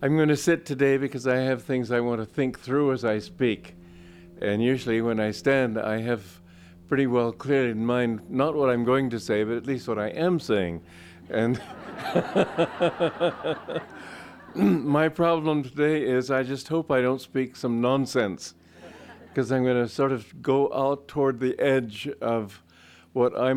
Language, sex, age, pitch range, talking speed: English, male, 50-69, 110-150 Hz, 175 wpm